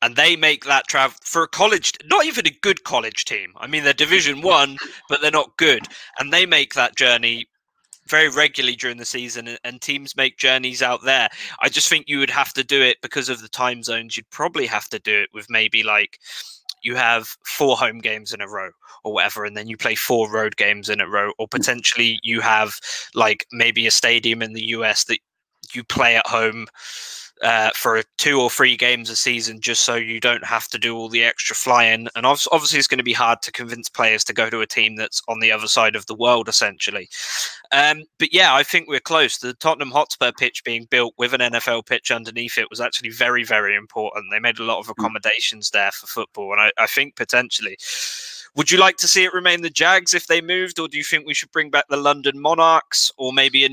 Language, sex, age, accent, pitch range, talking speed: English, male, 20-39, British, 115-145 Hz, 230 wpm